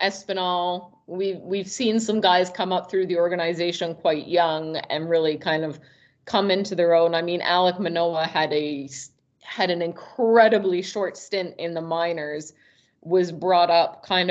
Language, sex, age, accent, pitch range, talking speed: English, female, 30-49, American, 160-200 Hz, 170 wpm